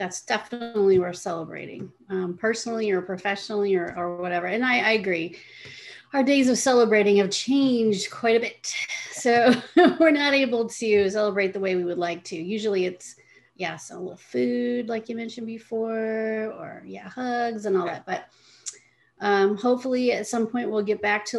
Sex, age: female, 30-49